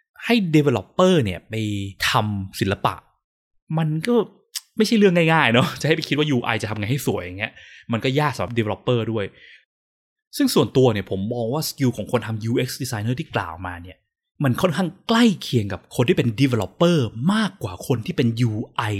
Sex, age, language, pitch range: male, 20-39, Thai, 105-155 Hz